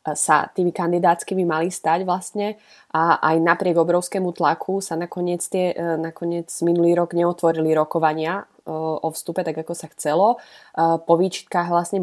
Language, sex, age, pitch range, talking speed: Slovak, female, 20-39, 160-185 Hz, 140 wpm